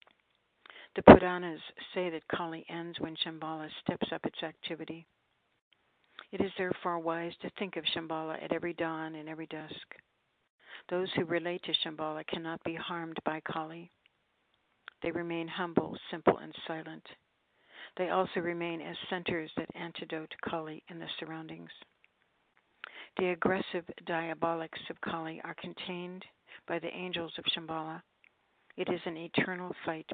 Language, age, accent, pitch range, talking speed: English, 60-79, American, 160-175 Hz, 140 wpm